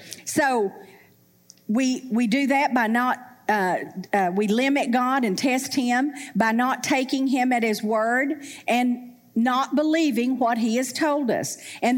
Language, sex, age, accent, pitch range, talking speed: English, female, 50-69, American, 225-295 Hz, 155 wpm